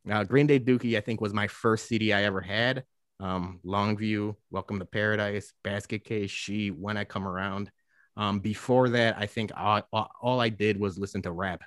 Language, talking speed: English, 200 wpm